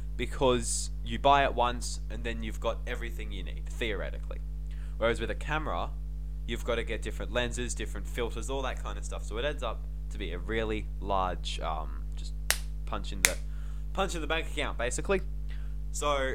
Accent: Australian